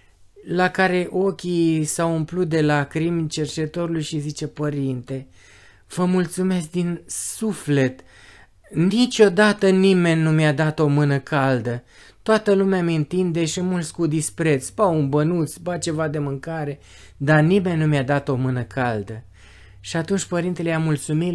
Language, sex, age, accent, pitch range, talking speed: Romanian, male, 20-39, native, 125-180 Hz, 140 wpm